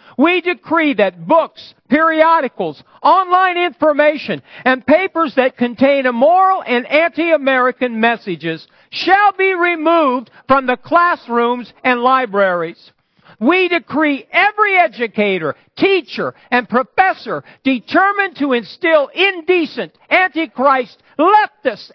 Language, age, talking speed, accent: English, 50-69, 100 wpm, American